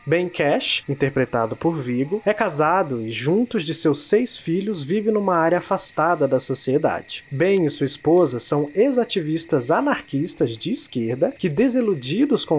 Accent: Brazilian